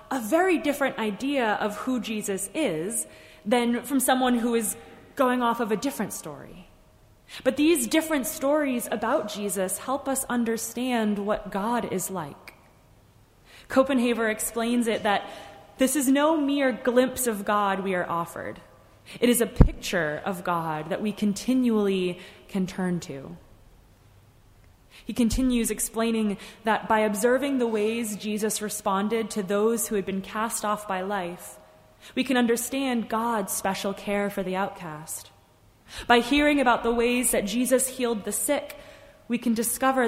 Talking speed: 150 wpm